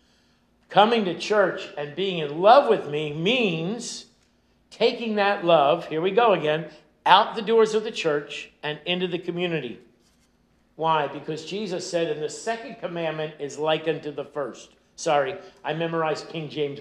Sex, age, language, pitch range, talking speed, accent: male, 50-69, English, 155-215 Hz, 160 wpm, American